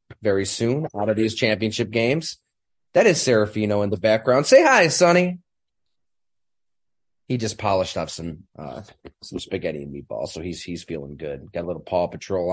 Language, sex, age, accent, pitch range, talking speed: English, male, 30-49, American, 110-145 Hz, 170 wpm